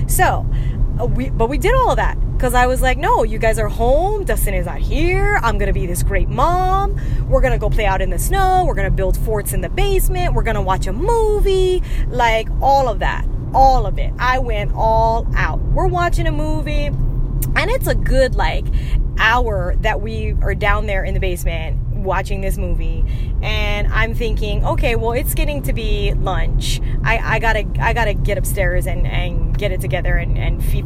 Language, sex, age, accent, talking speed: English, female, 20-39, American, 210 wpm